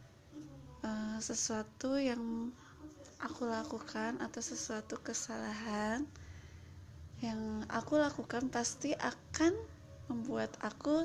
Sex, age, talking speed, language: female, 20-39, 75 wpm, Indonesian